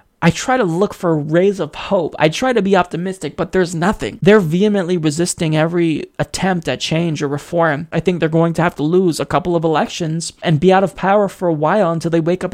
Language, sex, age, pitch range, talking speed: English, male, 20-39, 160-200 Hz, 235 wpm